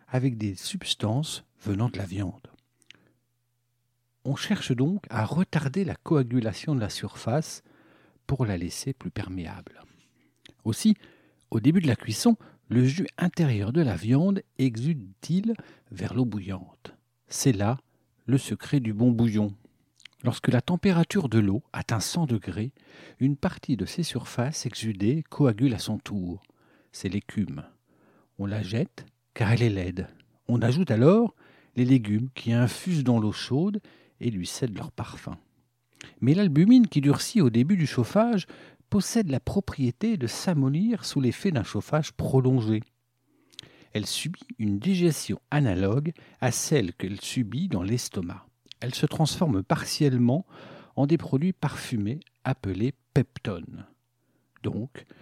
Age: 60-79